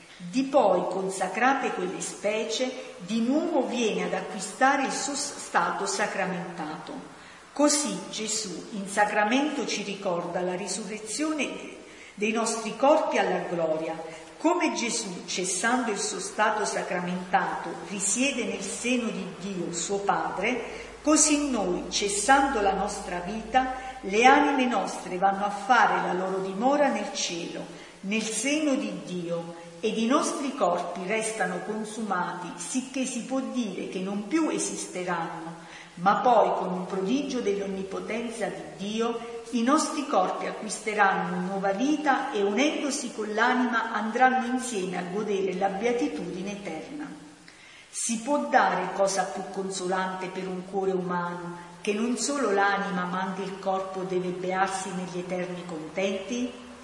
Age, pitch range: 50-69, 185-250 Hz